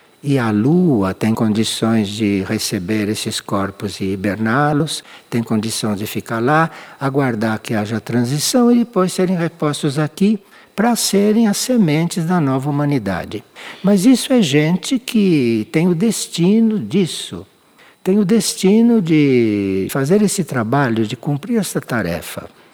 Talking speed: 135 wpm